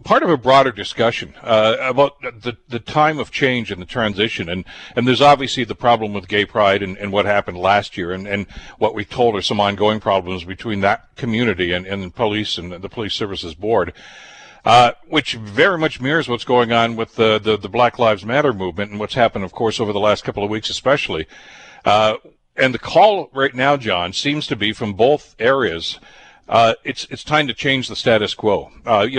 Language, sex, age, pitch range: English, male, 60-79, 100-125 Hz